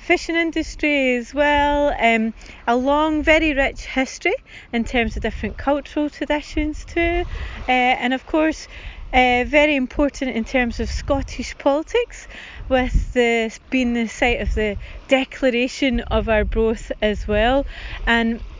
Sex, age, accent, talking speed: female, 30-49, British, 140 wpm